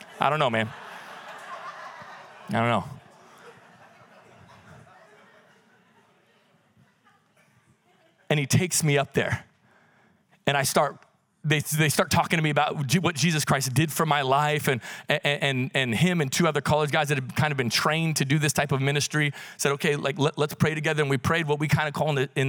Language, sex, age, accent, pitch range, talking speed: English, male, 30-49, American, 140-170 Hz, 185 wpm